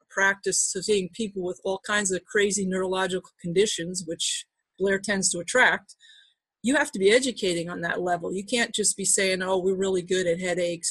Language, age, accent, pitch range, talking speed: English, 30-49, American, 180-215 Hz, 195 wpm